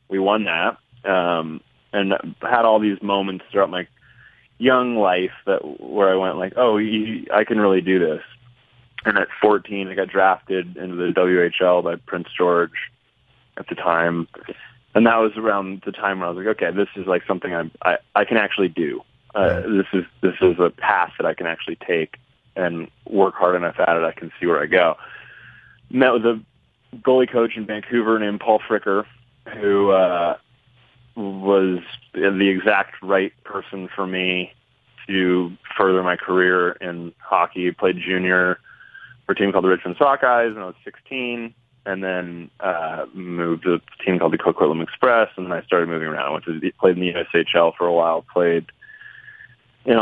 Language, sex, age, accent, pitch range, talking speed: English, male, 20-39, American, 90-115 Hz, 180 wpm